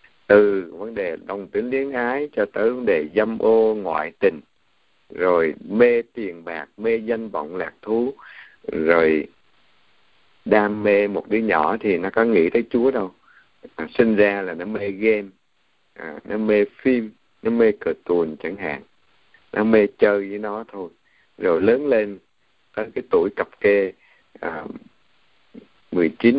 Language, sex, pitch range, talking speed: Vietnamese, male, 95-115 Hz, 155 wpm